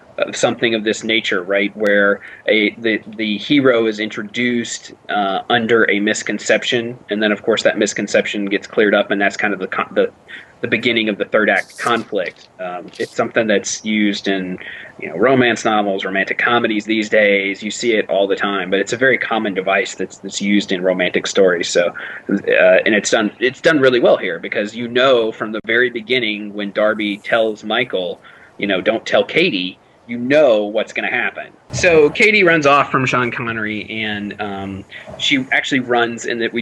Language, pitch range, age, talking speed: English, 105-125 Hz, 30-49, 190 wpm